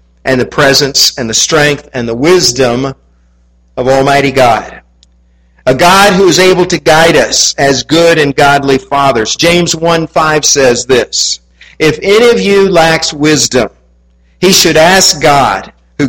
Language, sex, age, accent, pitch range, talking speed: English, male, 50-69, American, 125-180 Hz, 150 wpm